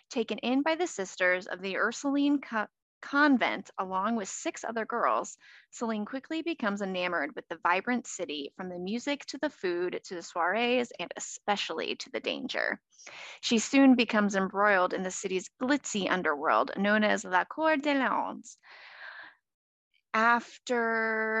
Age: 20-39